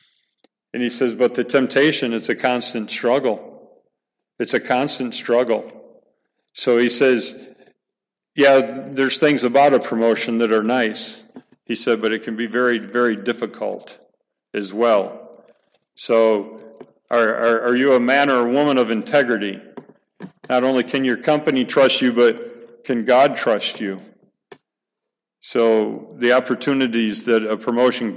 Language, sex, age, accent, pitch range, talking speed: English, male, 50-69, American, 115-135 Hz, 145 wpm